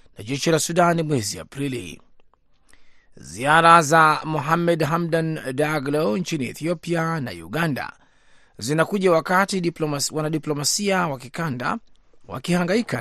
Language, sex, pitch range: Swahili, male, 135-170 Hz